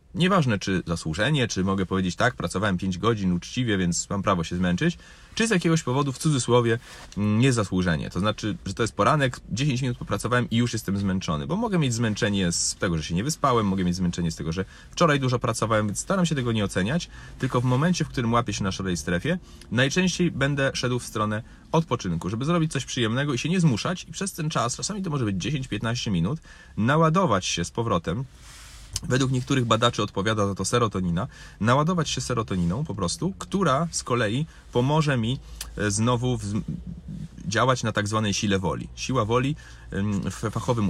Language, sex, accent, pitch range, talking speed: Polish, male, native, 95-135 Hz, 190 wpm